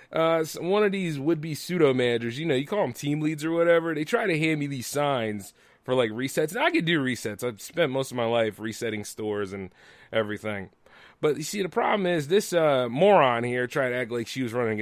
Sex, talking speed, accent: male, 245 wpm, American